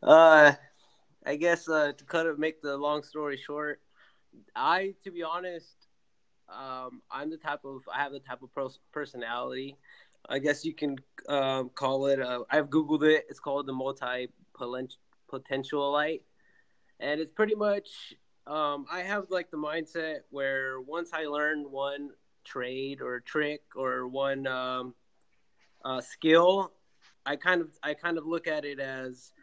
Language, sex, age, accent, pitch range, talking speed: English, male, 20-39, American, 135-160 Hz, 160 wpm